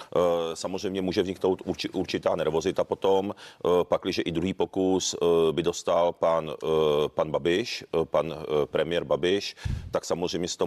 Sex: male